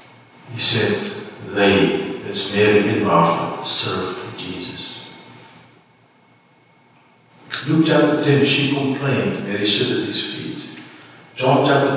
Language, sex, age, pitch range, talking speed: English, male, 60-79, 105-135 Hz, 105 wpm